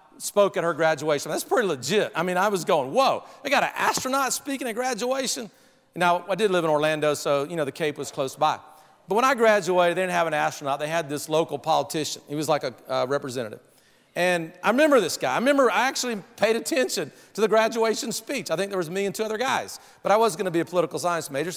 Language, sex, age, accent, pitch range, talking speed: English, male, 40-59, American, 155-230 Hz, 245 wpm